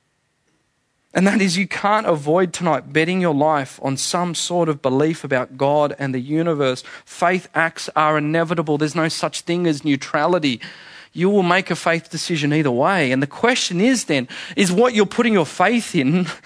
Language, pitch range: English, 135-175 Hz